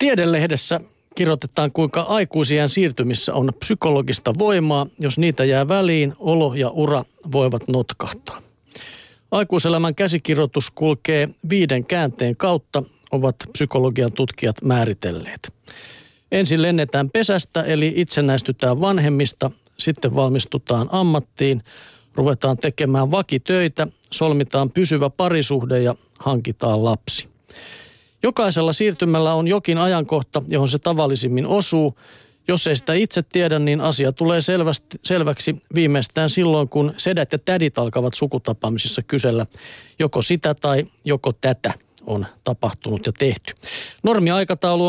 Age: 50-69